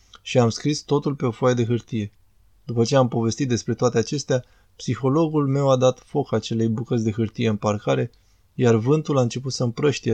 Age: 20-39